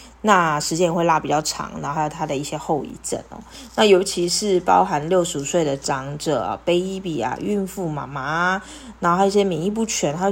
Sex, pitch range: female, 155-200 Hz